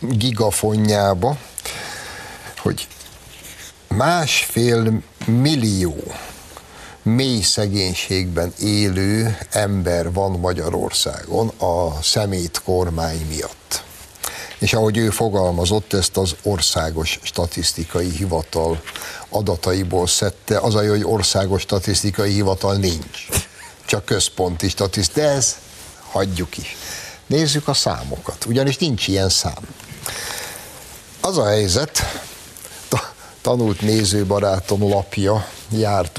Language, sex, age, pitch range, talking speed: Hungarian, male, 60-79, 85-110 Hz, 85 wpm